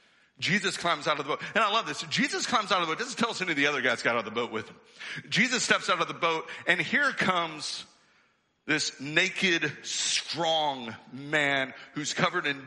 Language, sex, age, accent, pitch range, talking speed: English, male, 50-69, American, 145-185 Hz, 225 wpm